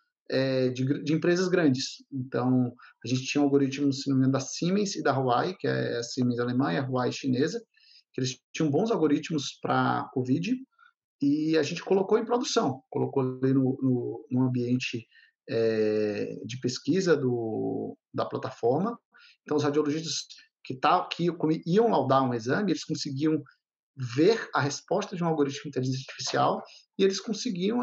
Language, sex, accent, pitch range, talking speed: Portuguese, male, Brazilian, 130-180 Hz, 160 wpm